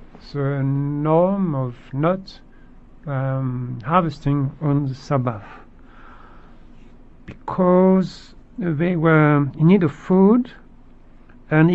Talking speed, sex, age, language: 85 wpm, male, 60-79, English